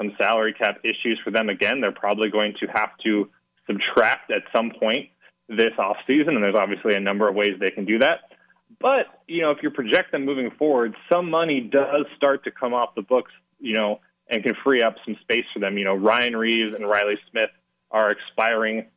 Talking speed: 210 wpm